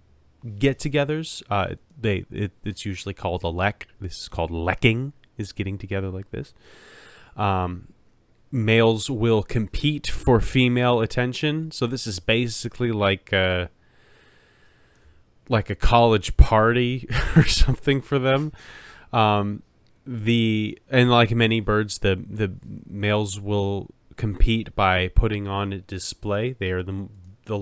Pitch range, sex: 95-120 Hz, male